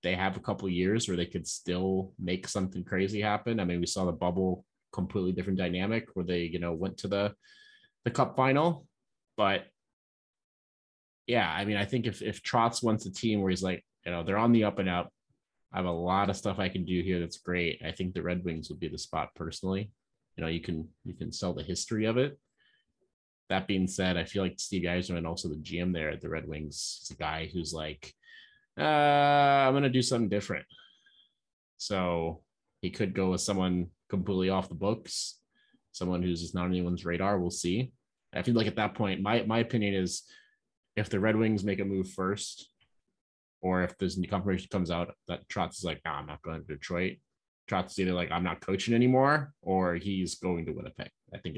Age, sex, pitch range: 30-49, male, 90-105 Hz